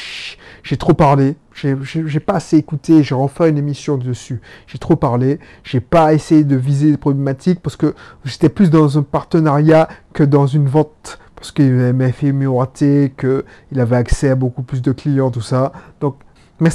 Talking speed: 195 wpm